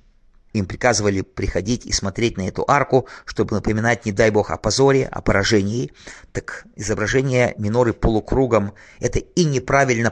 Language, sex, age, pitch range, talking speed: English, male, 30-49, 100-120 Hz, 140 wpm